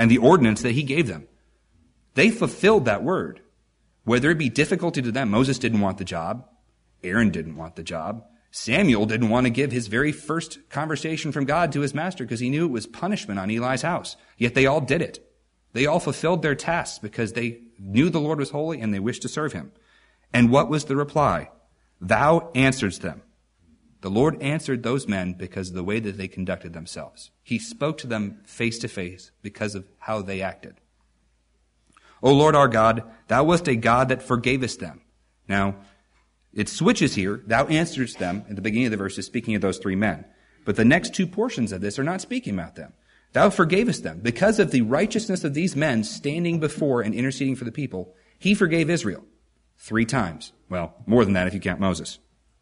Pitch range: 100-150 Hz